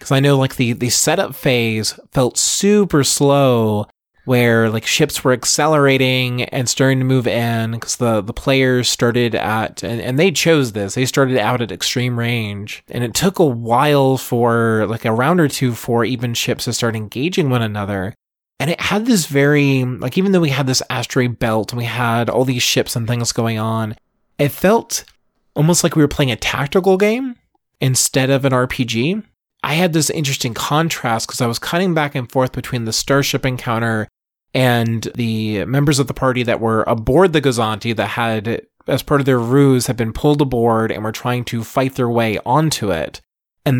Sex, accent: male, American